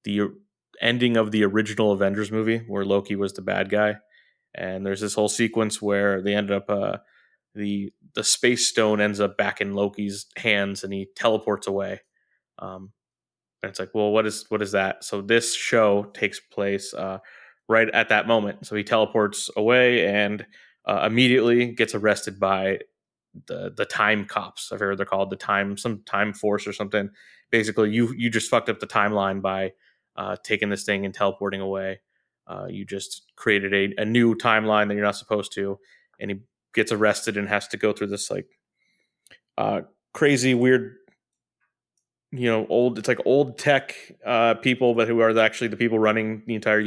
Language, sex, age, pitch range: English, male, 20-39, 100-115 Hz